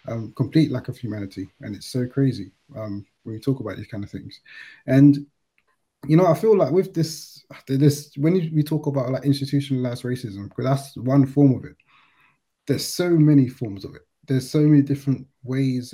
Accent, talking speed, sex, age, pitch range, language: British, 190 wpm, male, 20-39, 120-140 Hz, English